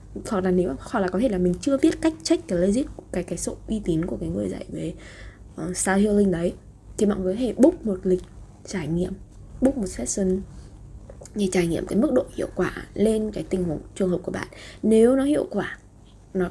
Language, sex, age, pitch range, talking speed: Vietnamese, female, 20-39, 180-220 Hz, 230 wpm